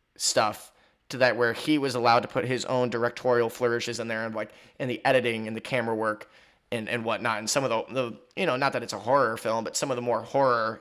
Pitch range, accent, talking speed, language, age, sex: 115-130 Hz, American, 255 wpm, English, 20-39, male